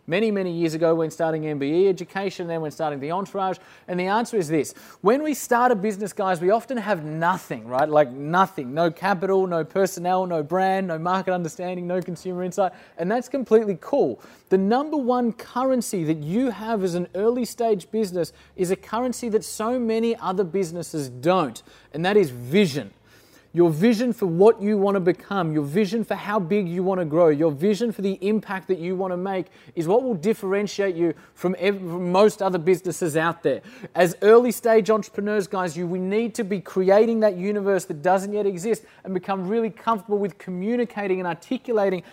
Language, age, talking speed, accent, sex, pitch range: English, 30-49, 195 wpm, Australian, male, 175-220 Hz